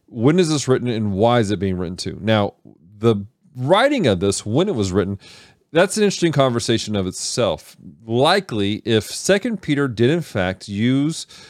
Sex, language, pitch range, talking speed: male, English, 105-150 Hz, 180 wpm